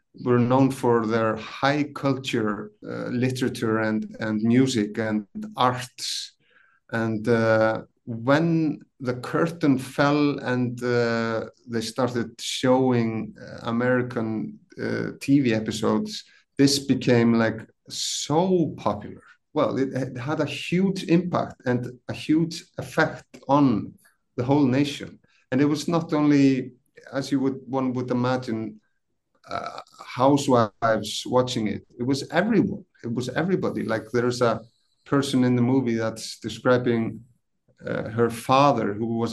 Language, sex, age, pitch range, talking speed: English, male, 50-69, 115-140 Hz, 125 wpm